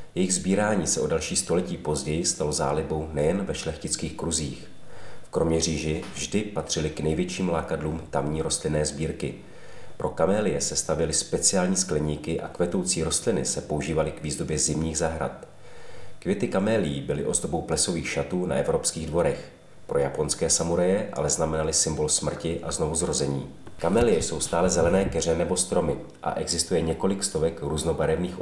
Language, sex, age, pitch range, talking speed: Czech, male, 40-59, 75-90 Hz, 145 wpm